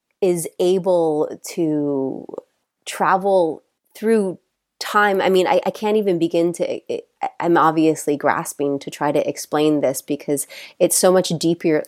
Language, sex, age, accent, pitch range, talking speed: English, female, 30-49, American, 145-175 Hz, 135 wpm